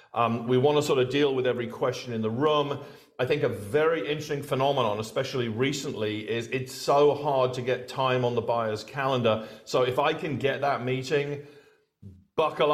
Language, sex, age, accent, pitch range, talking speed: English, male, 40-59, British, 125-155 Hz, 190 wpm